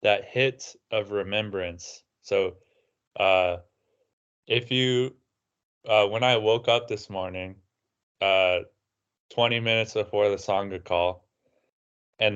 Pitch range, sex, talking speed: 95-115 Hz, male, 110 wpm